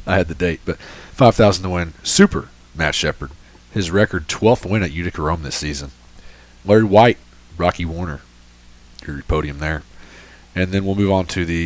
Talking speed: 175 wpm